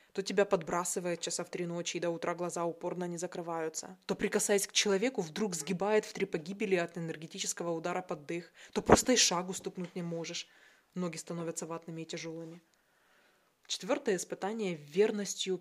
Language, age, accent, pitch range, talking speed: Russian, 20-39, native, 170-210 Hz, 170 wpm